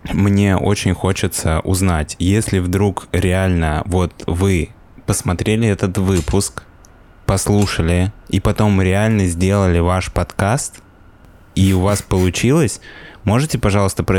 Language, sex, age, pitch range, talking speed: Russian, male, 20-39, 85-100 Hz, 110 wpm